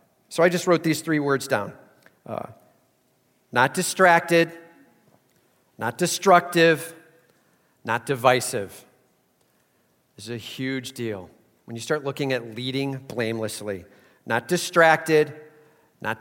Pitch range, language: 115-135 Hz, English